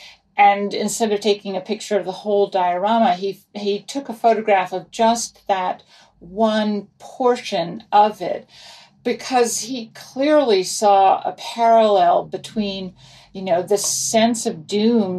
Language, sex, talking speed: English, female, 140 wpm